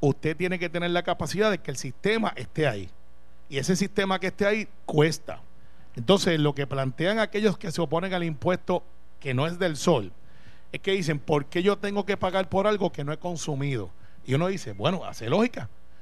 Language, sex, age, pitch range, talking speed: Spanish, male, 40-59, 145-195 Hz, 205 wpm